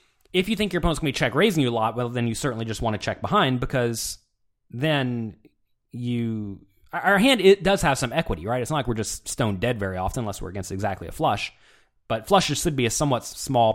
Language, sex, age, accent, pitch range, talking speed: English, male, 20-39, American, 105-145 Hz, 235 wpm